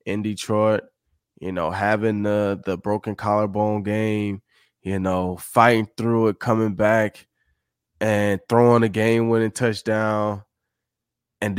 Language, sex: English, male